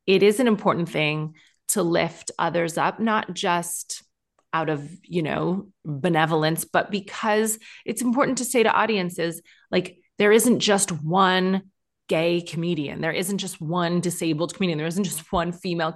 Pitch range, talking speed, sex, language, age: 160-210 Hz, 160 wpm, female, English, 30-49